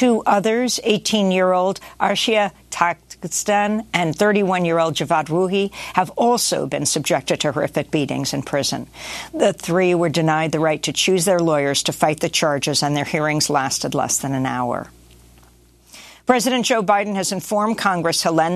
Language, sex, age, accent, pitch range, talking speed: English, female, 50-69, American, 145-185 Hz, 155 wpm